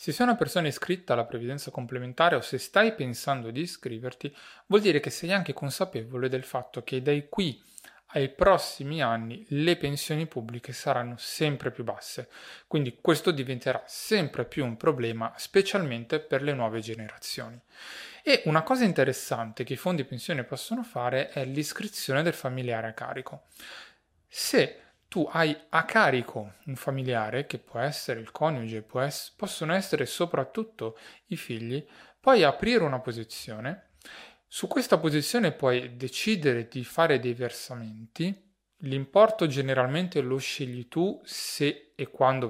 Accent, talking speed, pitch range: native, 145 wpm, 125-165 Hz